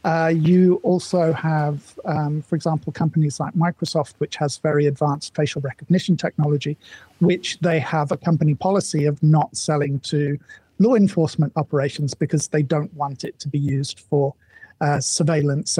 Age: 50-69